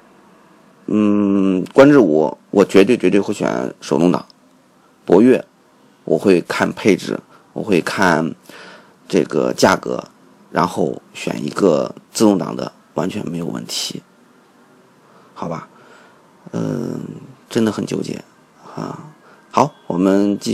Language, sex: Chinese, male